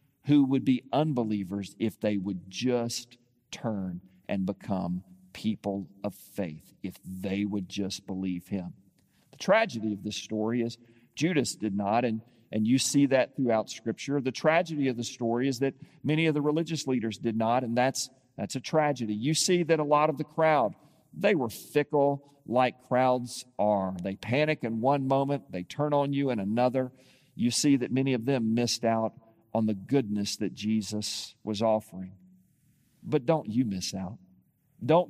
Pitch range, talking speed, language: 105-145 Hz, 175 wpm, English